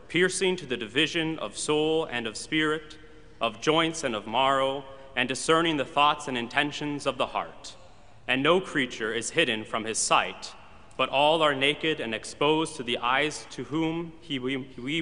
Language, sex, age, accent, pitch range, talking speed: English, male, 30-49, American, 120-155 Hz, 180 wpm